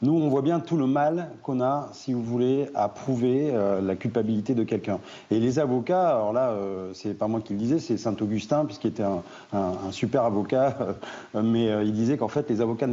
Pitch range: 110-135 Hz